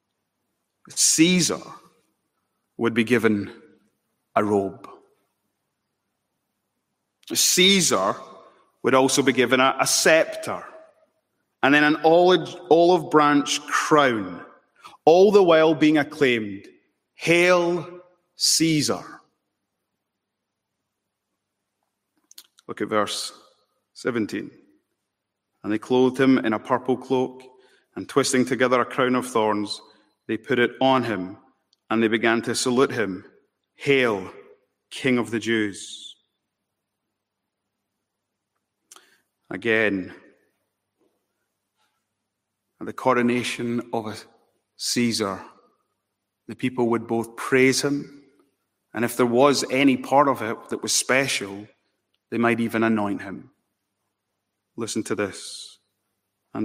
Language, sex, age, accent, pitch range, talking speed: English, male, 30-49, British, 110-145 Hz, 100 wpm